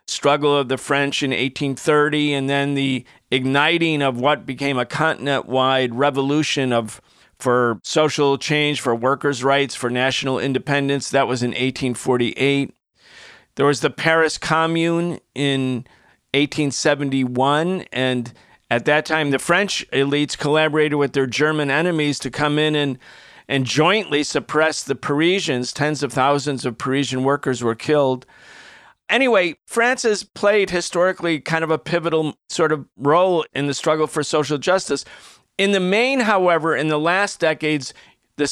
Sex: male